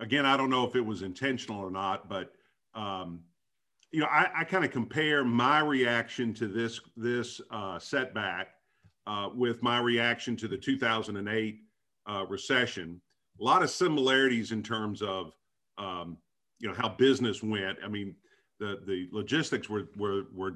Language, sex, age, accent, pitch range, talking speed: English, male, 50-69, American, 105-130 Hz, 165 wpm